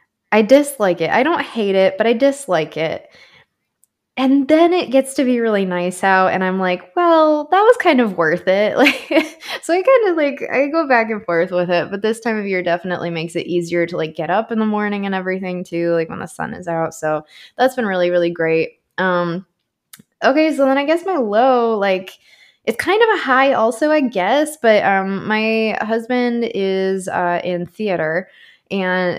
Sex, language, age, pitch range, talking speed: female, English, 20-39, 175-235 Hz, 205 wpm